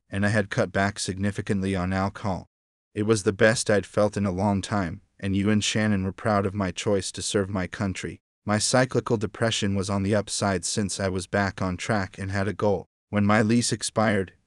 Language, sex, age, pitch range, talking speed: English, male, 30-49, 95-105 Hz, 215 wpm